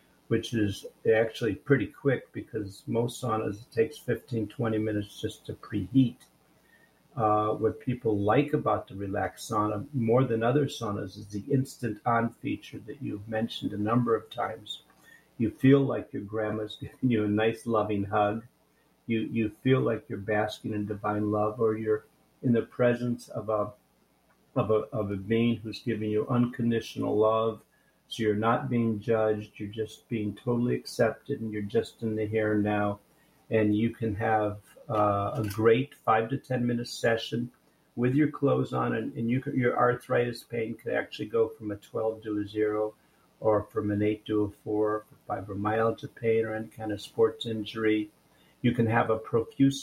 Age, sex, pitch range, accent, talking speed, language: 50-69, male, 105-120 Hz, American, 175 wpm, English